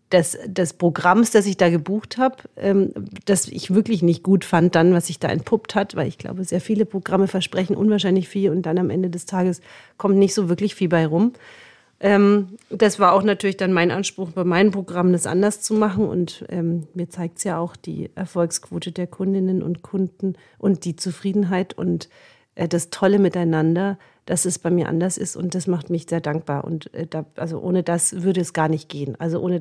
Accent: German